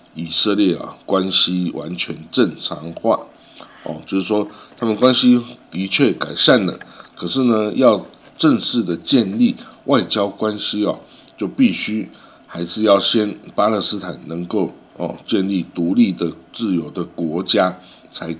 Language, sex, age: Chinese, male, 60-79